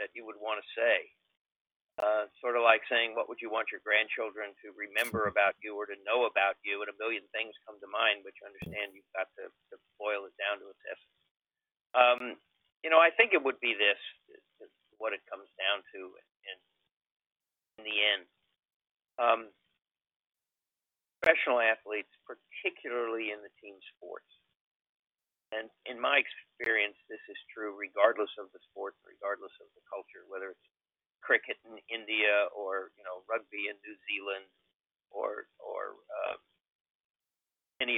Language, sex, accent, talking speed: English, male, American, 165 wpm